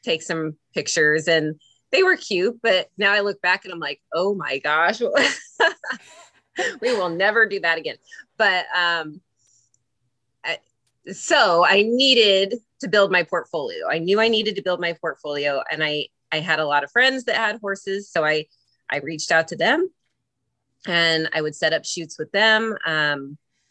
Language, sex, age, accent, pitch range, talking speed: English, female, 30-49, American, 150-195 Hz, 170 wpm